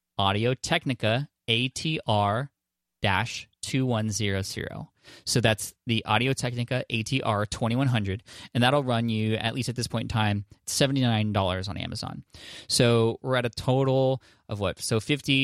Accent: American